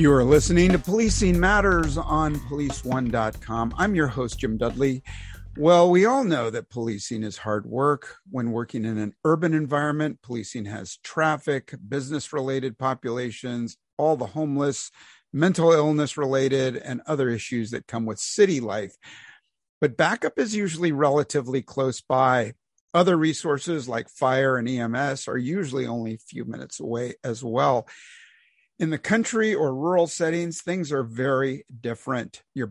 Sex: male